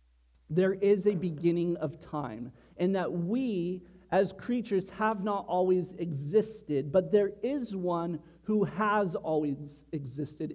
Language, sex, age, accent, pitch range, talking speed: English, male, 40-59, American, 145-185 Hz, 130 wpm